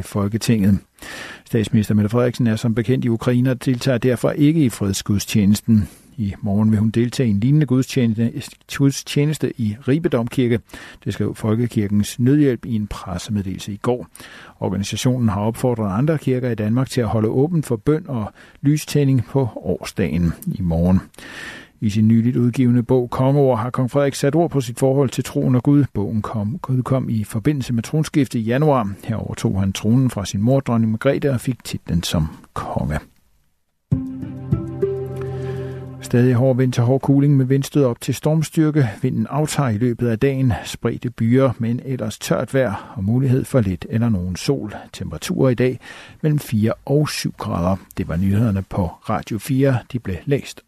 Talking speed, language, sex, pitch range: 165 wpm, Danish, male, 110-135 Hz